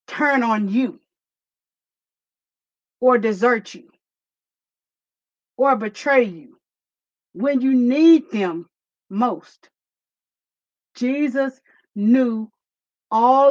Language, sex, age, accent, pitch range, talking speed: English, female, 40-59, American, 220-275 Hz, 75 wpm